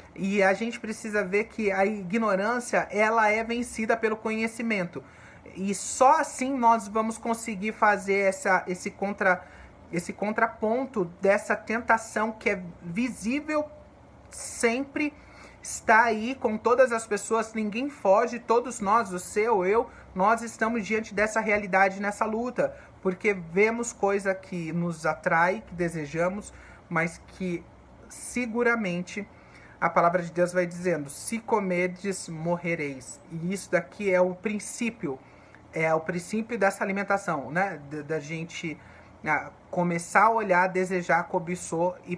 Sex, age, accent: male, 30-49, Brazilian